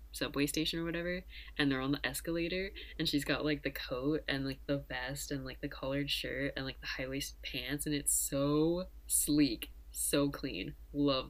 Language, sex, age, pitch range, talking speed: English, female, 10-29, 120-160 Hz, 195 wpm